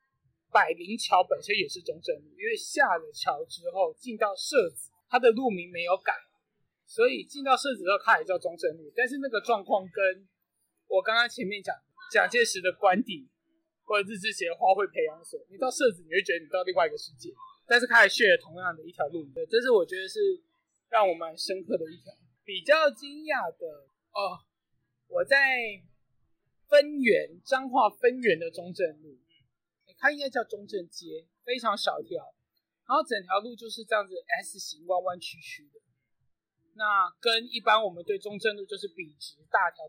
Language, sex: Chinese, male